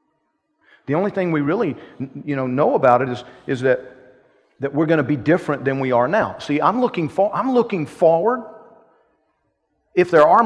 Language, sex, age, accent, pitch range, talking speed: English, male, 40-59, American, 125-160 Hz, 190 wpm